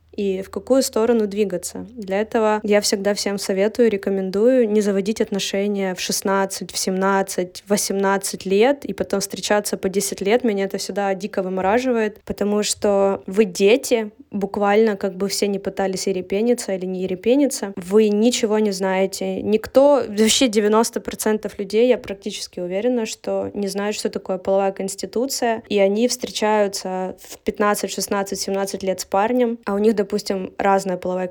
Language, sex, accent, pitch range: Russian, female, native, 195-225 Hz